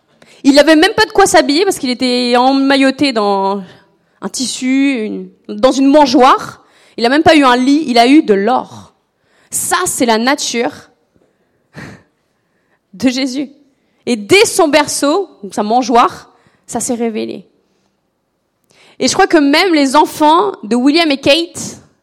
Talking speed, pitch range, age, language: 155 wpm, 225-300 Hz, 20-39, French